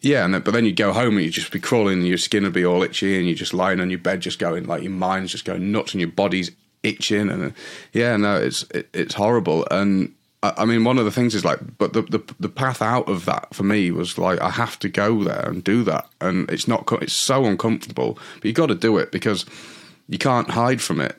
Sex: male